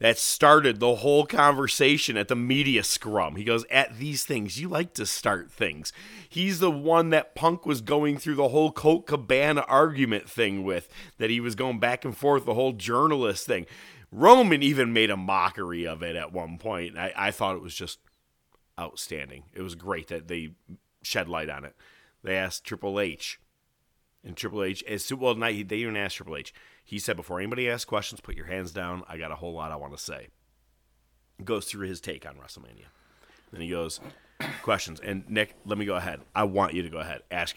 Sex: male